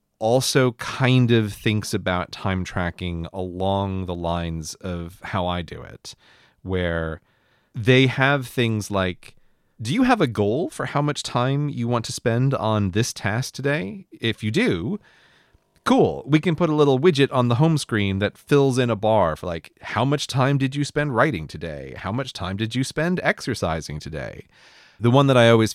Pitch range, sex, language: 95-130 Hz, male, English